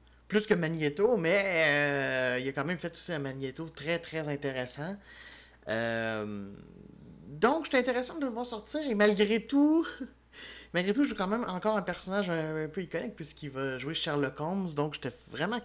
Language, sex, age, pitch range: French, male, 30-49, 130-175 Hz